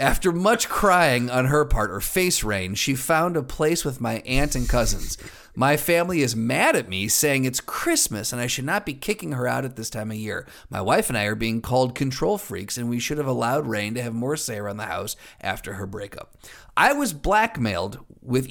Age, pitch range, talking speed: 30-49, 110-145 Hz, 225 wpm